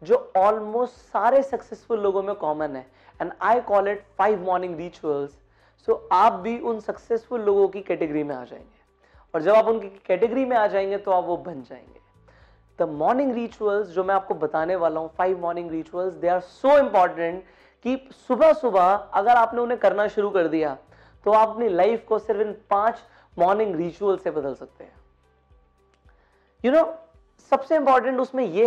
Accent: native